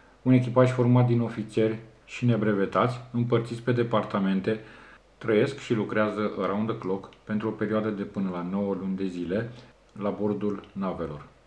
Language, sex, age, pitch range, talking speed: Romanian, male, 40-59, 100-120 Hz, 150 wpm